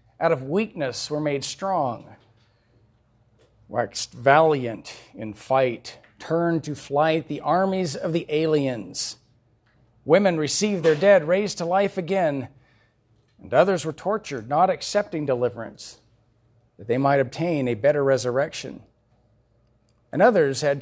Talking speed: 125 wpm